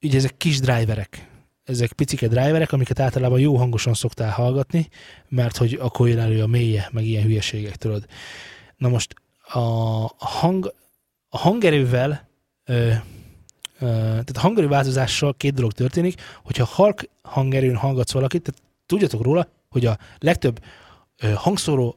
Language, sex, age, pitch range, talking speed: Hungarian, male, 20-39, 115-145 Hz, 120 wpm